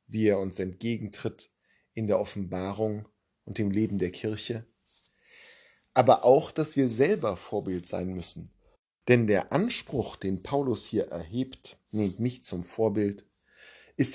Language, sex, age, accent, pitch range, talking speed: German, male, 50-69, German, 100-125 Hz, 135 wpm